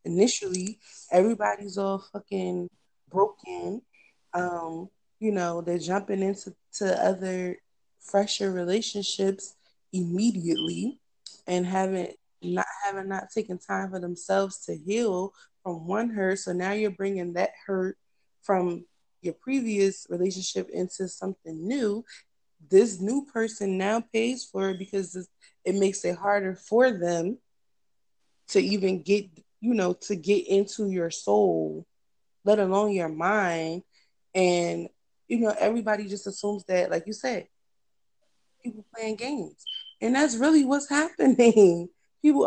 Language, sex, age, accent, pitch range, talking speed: English, female, 20-39, American, 180-210 Hz, 125 wpm